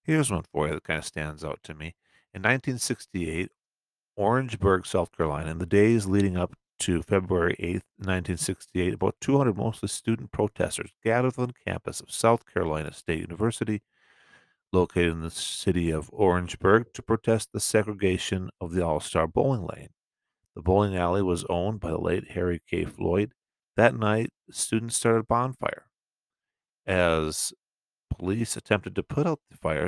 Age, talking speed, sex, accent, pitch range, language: 50-69, 160 wpm, male, American, 90-115 Hz, English